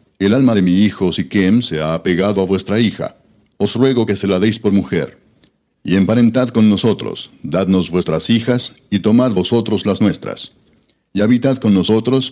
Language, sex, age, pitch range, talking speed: Spanish, male, 60-79, 95-110 Hz, 175 wpm